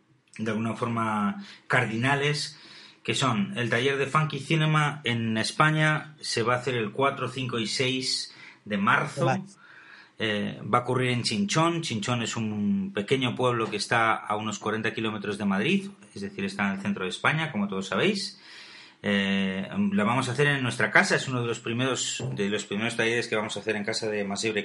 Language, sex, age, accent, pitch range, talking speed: Spanish, male, 30-49, Spanish, 105-125 Hz, 190 wpm